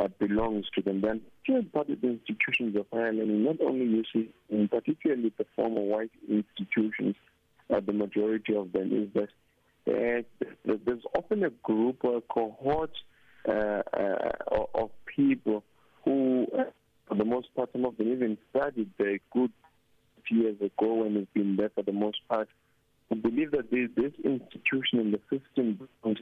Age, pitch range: 50-69, 105-120 Hz